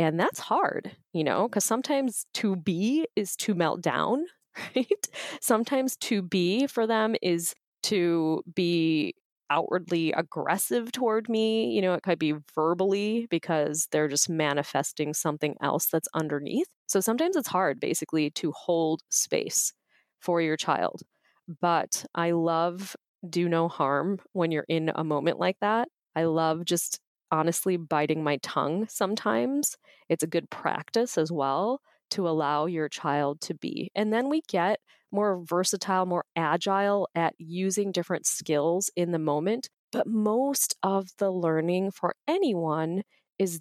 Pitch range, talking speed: 155-200 Hz, 145 wpm